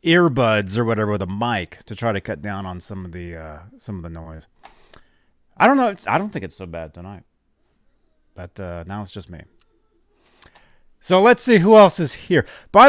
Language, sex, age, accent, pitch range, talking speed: English, male, 30-49, American, 95-155 Hz, 210 wpm